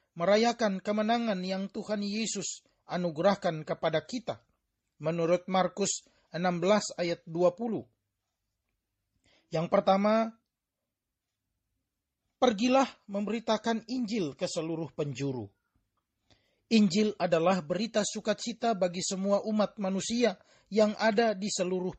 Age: 40-59